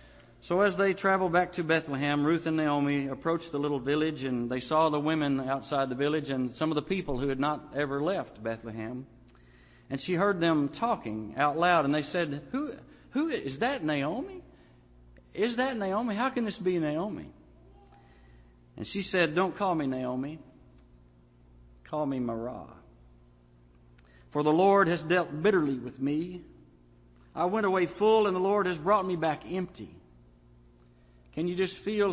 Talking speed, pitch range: 170 wpm, 110-175 Hz